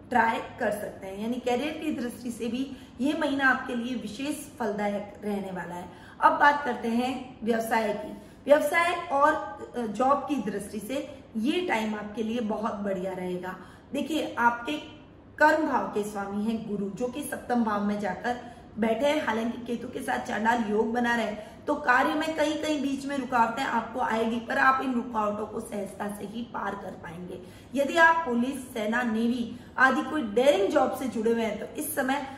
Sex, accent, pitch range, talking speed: female, native, 215-275 Hz, 185 wpm